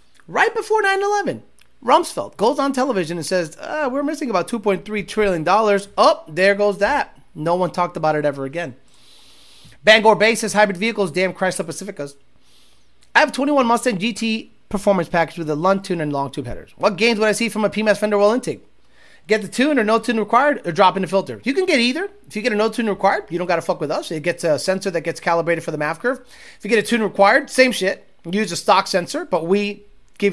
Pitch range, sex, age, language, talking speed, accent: 165-225 Hz, male, 30-49, English, 240 wpm, American